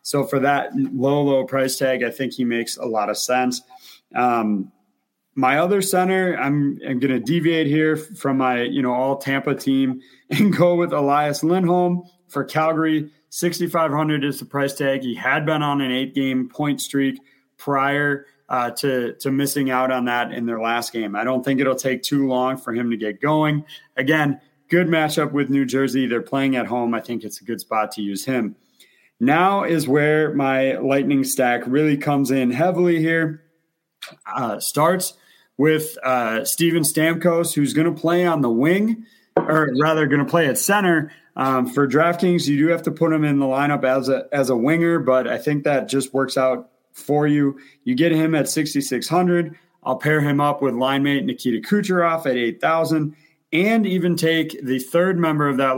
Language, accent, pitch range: English, American, 130-160 Hz